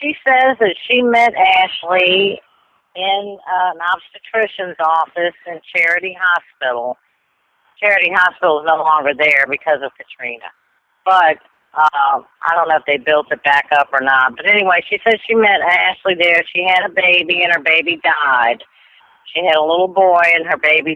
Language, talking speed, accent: English, 170 wpm, American